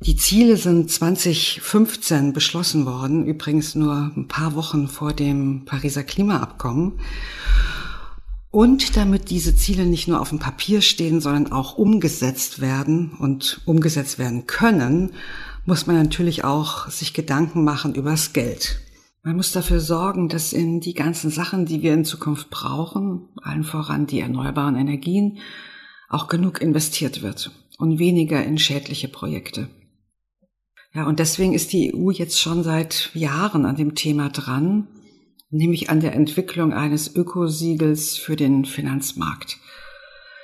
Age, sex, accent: 50-69, female, German